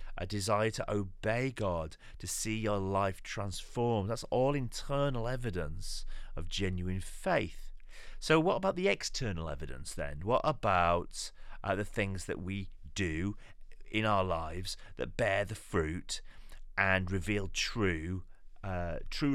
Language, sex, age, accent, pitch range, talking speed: English, male, 30-49, British, 90-120 Hz, 135 wpm